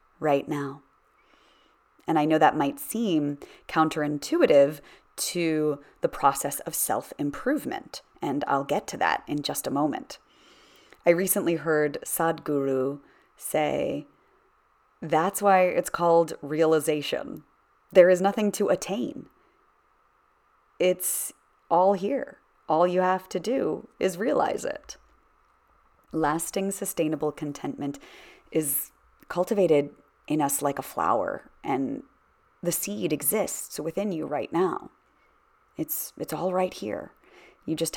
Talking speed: 115 wpm